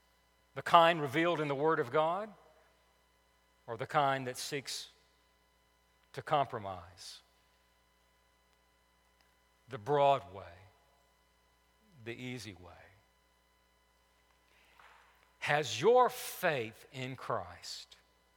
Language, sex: English, male